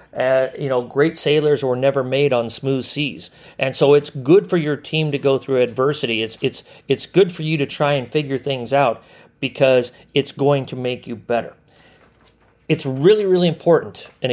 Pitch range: 115-145 Hz